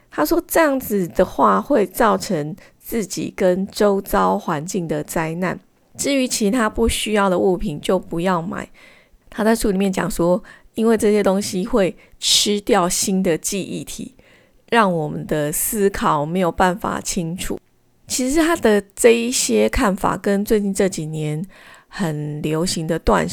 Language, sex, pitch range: Chinese, female, 180-225 Hz